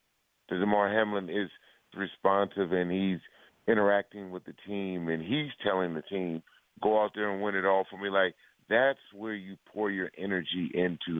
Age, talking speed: 40-59, 175 wpm